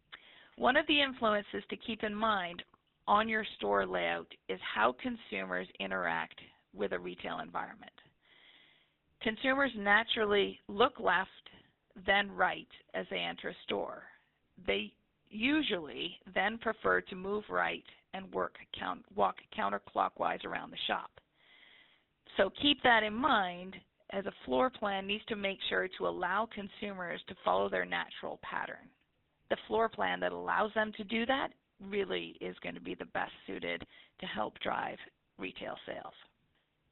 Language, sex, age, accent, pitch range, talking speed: English, female, 40-59, American, 180-225 Hz, 140 wpm